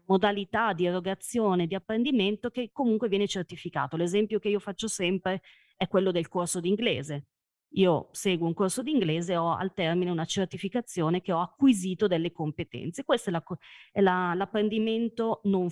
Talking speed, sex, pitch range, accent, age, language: 160 wpm, female, 170-205 Hz, native, 30-49, Italian